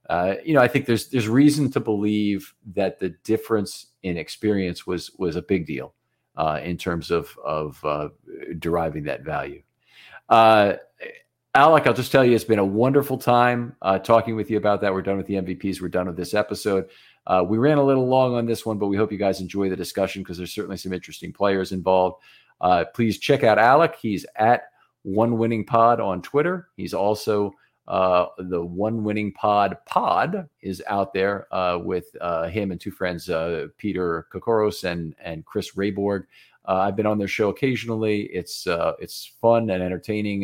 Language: English